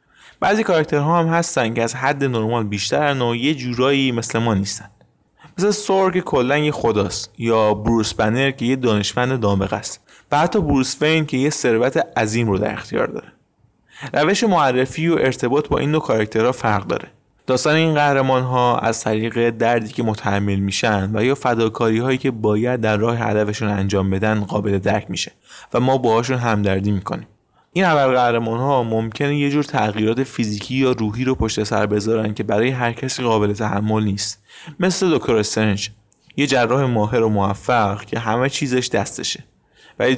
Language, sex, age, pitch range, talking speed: Persian, male, 20-39, 105-135 Hz, 165 wpm